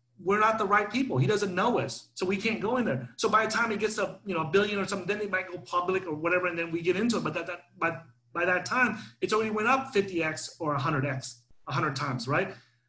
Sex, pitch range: male, 150-205 Hz